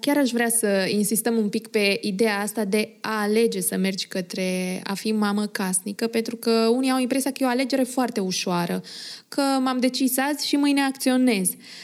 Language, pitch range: Romanian, 215-270 Hz